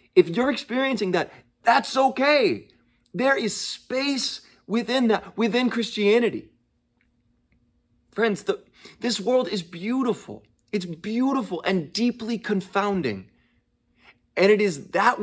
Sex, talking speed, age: male, 105 wpm, 30-49